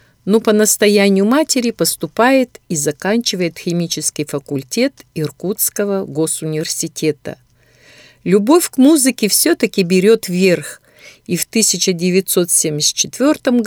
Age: 50-69